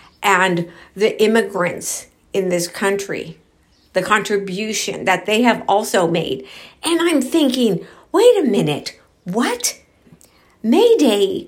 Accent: American